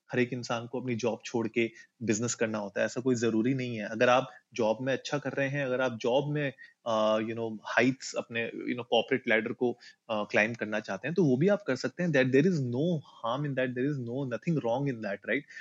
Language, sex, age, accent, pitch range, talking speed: Hindi, male, 30-49, native, 115-145 Hz, 250 wpm